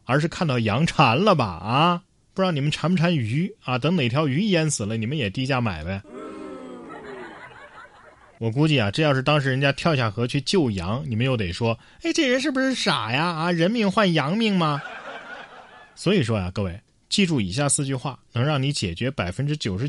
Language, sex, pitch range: Chinese, male, 115-160 Hz